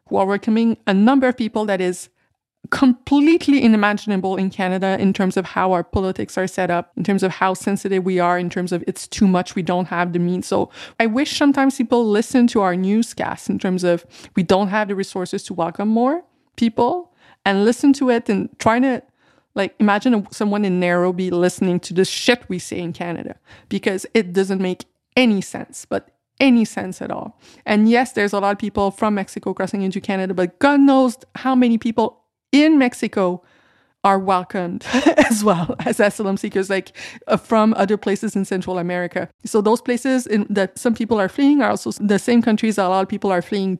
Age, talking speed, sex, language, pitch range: 30-49, 200 wpm, female, English, 190-230 Hz